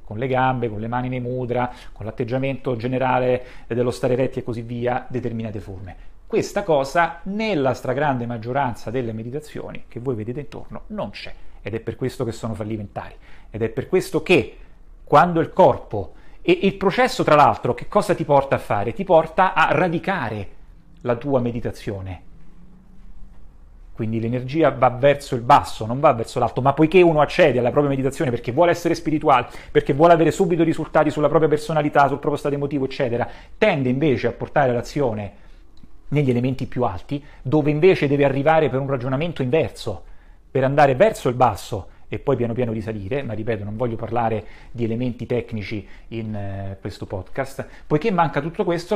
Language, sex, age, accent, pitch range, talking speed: Italian, male, 40-59, native, 120-160 Hz, 175 wpm